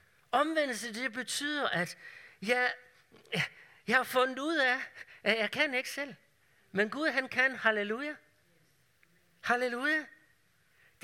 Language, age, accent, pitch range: Danish, 60-79, native, 165-240 Hz